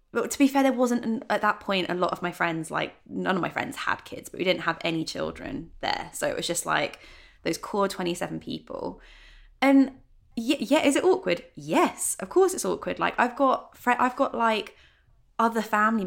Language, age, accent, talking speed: English, 20-39, British, 210 wpm